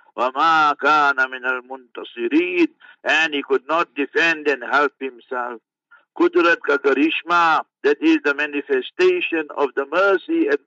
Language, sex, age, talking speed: English, male, 60-79, 125 wpm